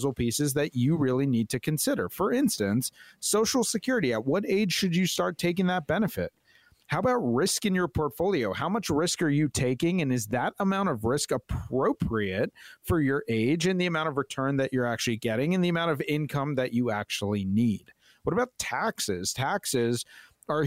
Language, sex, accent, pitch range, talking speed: English, male, American, 125-175 Hz, 190 wpm